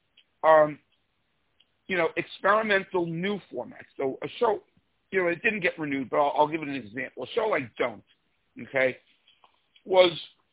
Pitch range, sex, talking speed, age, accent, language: 135-225 Hz, male, 160 wpm, 50-69, American, English